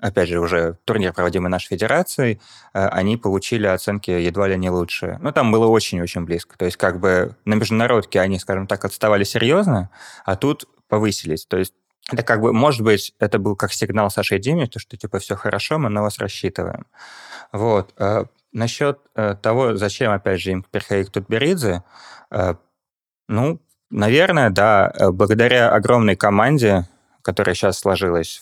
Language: Russian